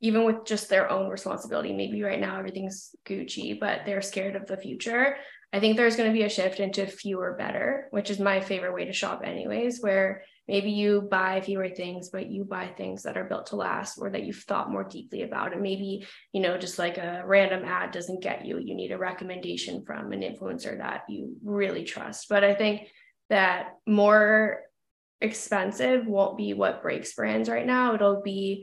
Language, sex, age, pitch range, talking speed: English, female, 10-29, 190-215 Hz, 200 wpm